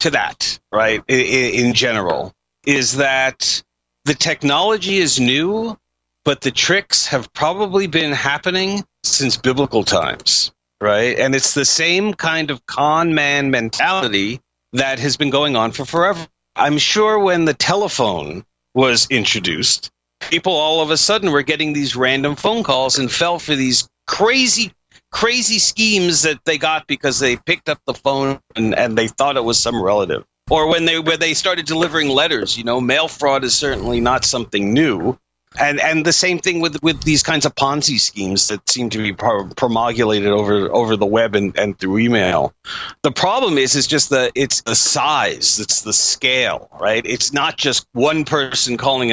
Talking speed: 175 wpm